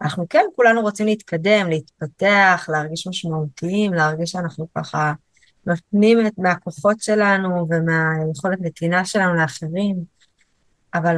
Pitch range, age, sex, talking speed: 170-205 Hz, 20-39, female, 105 wpm